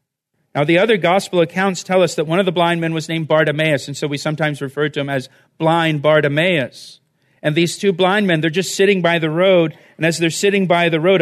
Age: 40-59